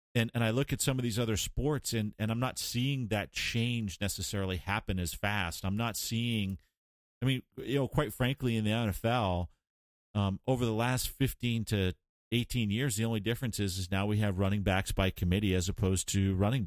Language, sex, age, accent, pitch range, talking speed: English, male, 40-59, American, 95-115 Hz, 205 wpm